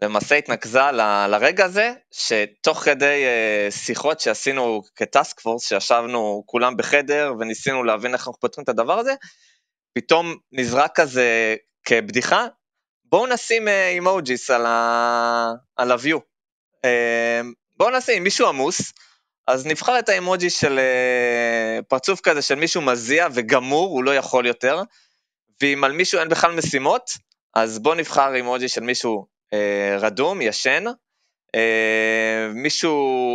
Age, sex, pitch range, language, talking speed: 20-39, male, 115-165 Hz, Hebrew, 125 wpm